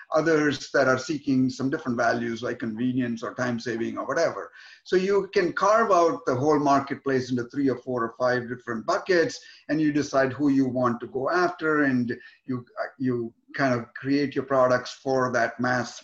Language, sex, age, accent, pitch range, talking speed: English, male, 50-69, Indian, 125-150 Hz, 185 wpm